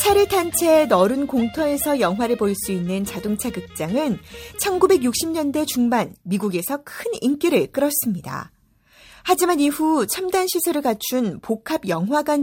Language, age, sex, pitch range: Korean, 40-59, female, 210-315 Hz